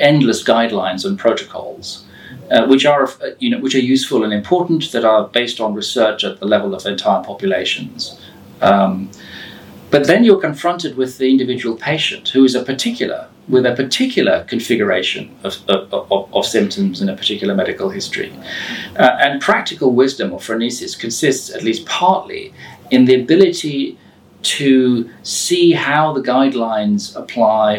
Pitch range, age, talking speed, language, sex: 115-155 Hz, 40-59, 160 wpm, English, male